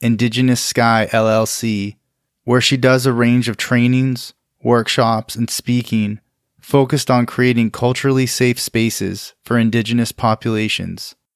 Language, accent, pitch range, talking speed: English, American, 115-125 Hz, 115 wpm